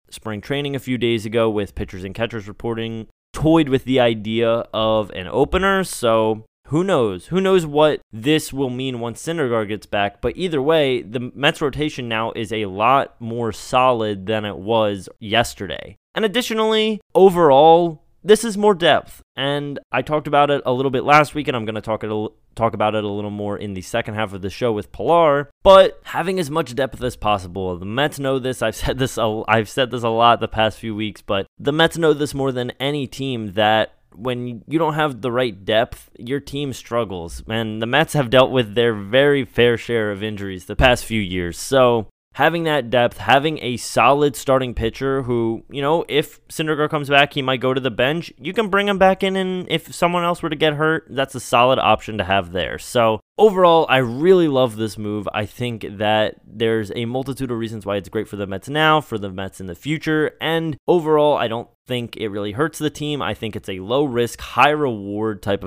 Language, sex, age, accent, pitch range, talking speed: English, male, 20-39, American, 110-150 Hz, 215 wpm